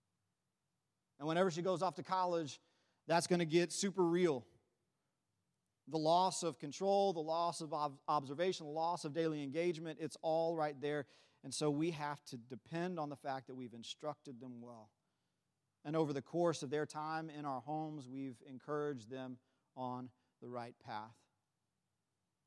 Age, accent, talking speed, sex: 40-59, American, 165 wpm, male